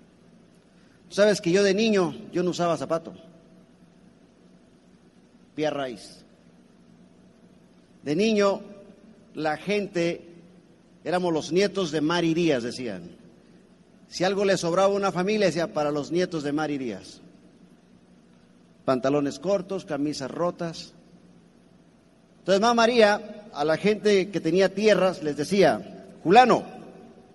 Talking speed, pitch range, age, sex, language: 115 wpm, 145-205 Hz, 40-59, male, Spanish